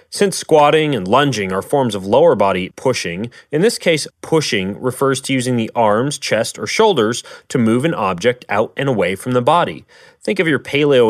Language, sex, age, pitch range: English, male, 30-49, 110-150 Hz